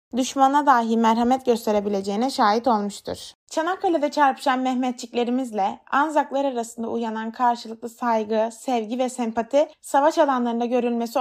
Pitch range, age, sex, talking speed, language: 220-270 Hz, 20-39, female, 105 wpm, Turkish